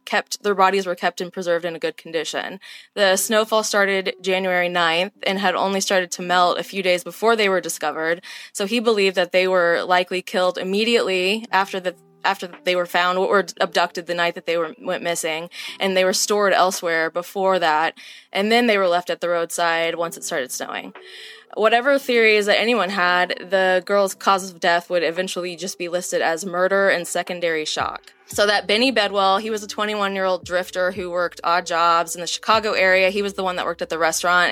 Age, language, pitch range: 20-39, English, 175-205 Hz